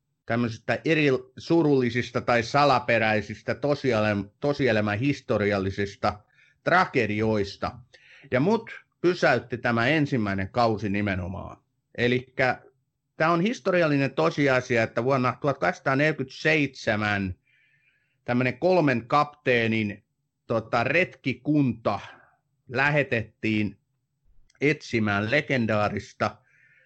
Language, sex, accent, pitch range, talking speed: Finnish, male, native, 105-135 Hz, 70 wpm